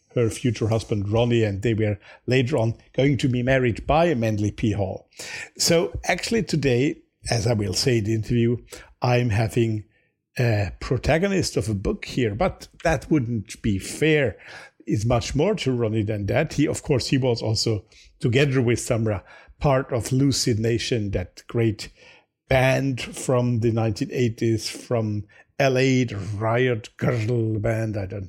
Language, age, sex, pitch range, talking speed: English, 50-69, male, 110-135 Hz, 155 wpm